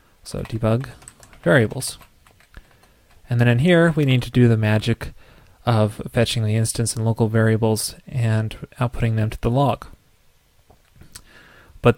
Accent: American